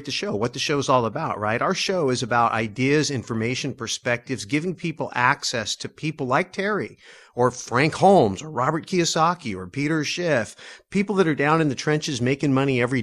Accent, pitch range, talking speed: American, 125-175 Hz, 195 wpm